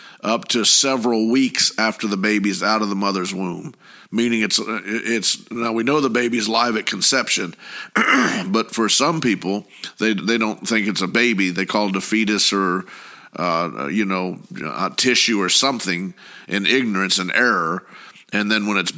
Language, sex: English, male